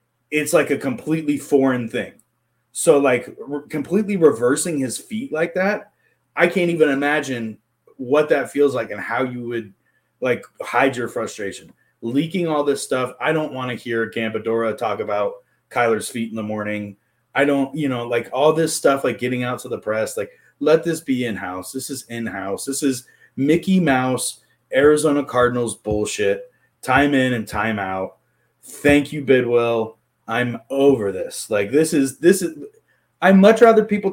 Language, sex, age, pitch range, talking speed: English, male, 30-49, 125-170 Hz, 170 wpm